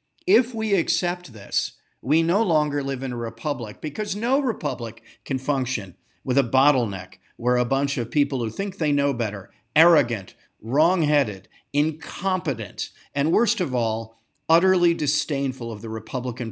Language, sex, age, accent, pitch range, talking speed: English, male, 50-69, American, 110-140 Hz, 150 wpm